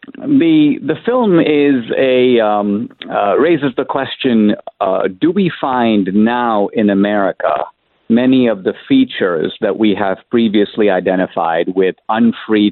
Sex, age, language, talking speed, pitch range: male, 50-69, English, 130 wpm, 100-135 Hz